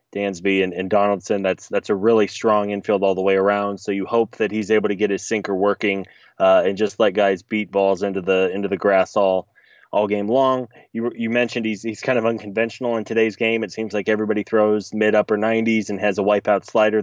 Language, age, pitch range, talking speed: English, 20-39, 100-110 Hz, 230 wpm